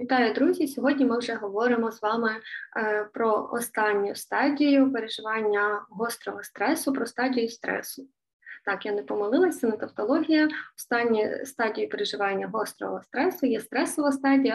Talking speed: 125 wpm